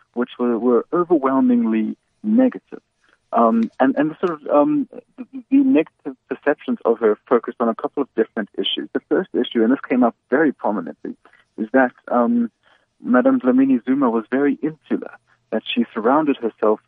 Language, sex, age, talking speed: English, male, 50-69, 155 wpm